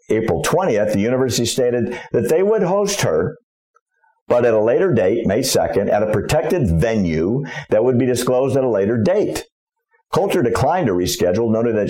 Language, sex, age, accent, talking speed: English, male, 50-69, American, 175 wpm